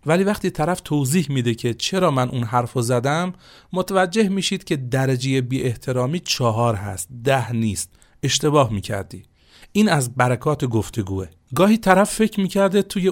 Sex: male